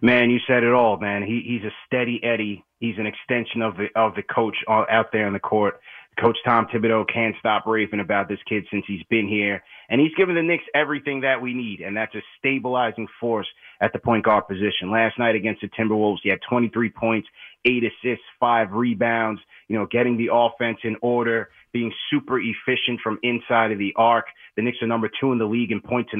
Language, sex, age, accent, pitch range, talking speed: English, male, 30-49, American, 105-125 Hz, 220 wpm